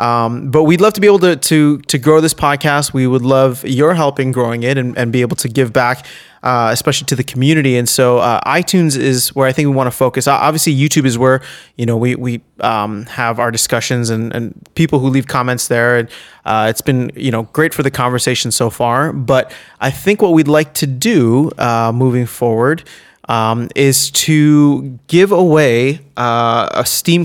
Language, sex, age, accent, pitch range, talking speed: English, male, 30-49, American, 120-150 Hz, 205 wpm